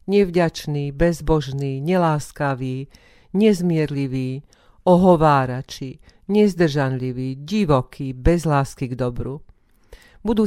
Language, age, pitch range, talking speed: Slovak, 40-59, 135-170 Hz, 70 wpm